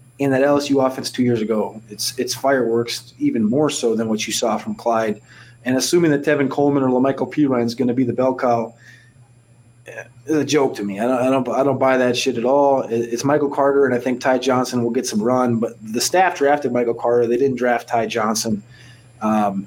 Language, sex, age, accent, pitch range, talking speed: English, male, 20-39, American, 120-145 Hz, 225 wpm